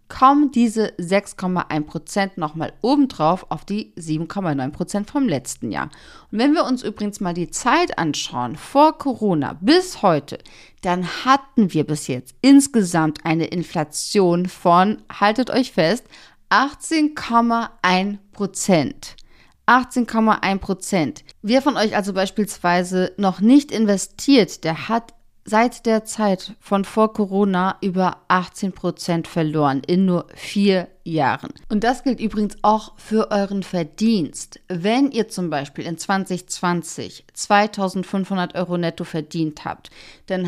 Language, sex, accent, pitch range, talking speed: German, female, German, 170-215 Hz, 120 wpm